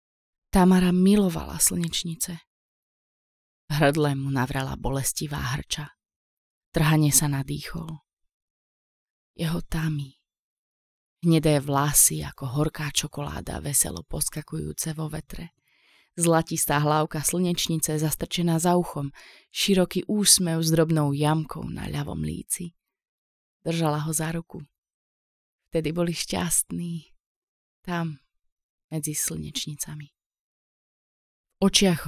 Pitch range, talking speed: 135-165 Hz, 90 wpm